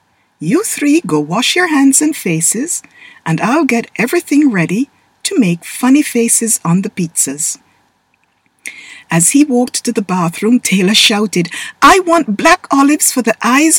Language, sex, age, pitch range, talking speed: English, female, 50-69, 175-285 Hz, 150 wpm